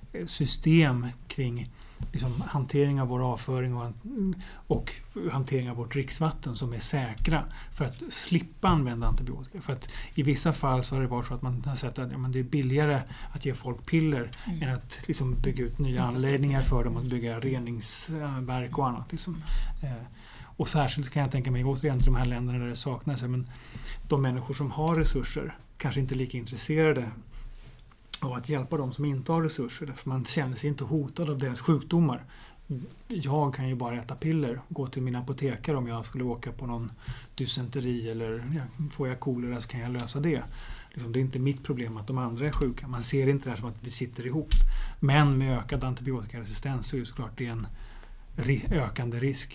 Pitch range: 125-145 Hz